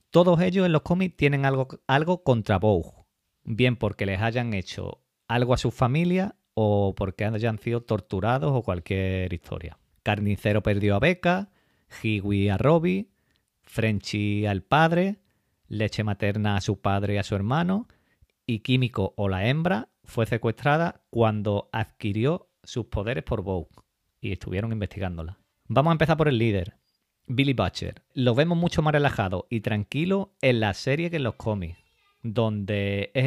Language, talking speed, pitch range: Spanish, 155 wpm, 100-140 Hz